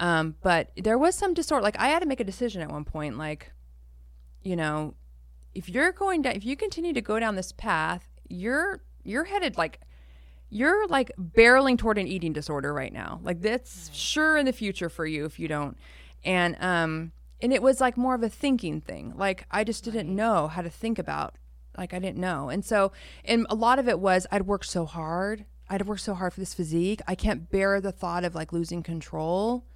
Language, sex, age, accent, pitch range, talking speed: English, female, 20-39, American, 155-215 Hz, 215 wpm